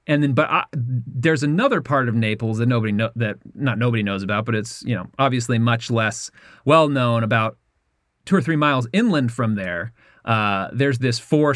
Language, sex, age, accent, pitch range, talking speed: English, male, 30-49, American, 110-135 Hz, 195 wpm